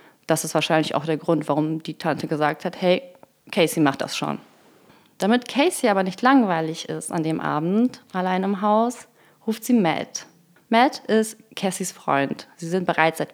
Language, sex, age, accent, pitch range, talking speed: German, female, 30-49, German, 160-200 Hz, 175 wpm